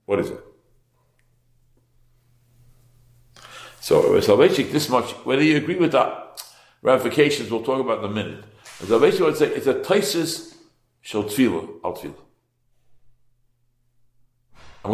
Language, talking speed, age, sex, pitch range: English, 100 wpm, 60-79, male, 120-190 Hz